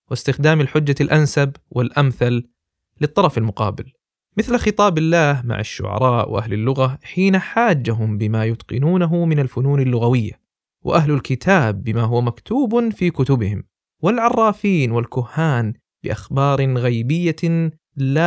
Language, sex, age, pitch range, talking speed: Arabic, male, 20-39, 115-165 Hz, 105 wpm